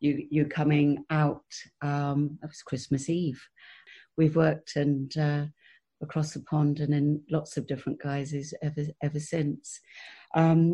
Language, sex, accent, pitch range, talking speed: English, female, British, 145-165 Hz, 145 wpm